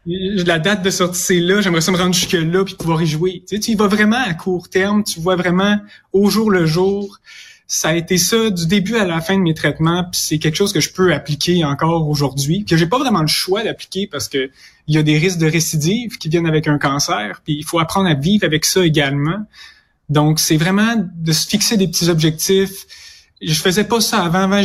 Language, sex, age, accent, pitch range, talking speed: French, male, 20-39, Canadian, 160-190 Hz, 235 wpm